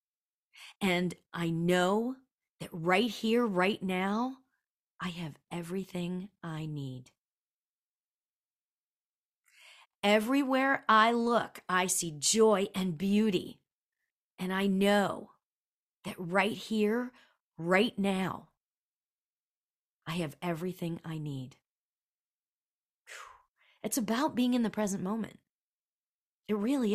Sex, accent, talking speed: female, American, 95 wpm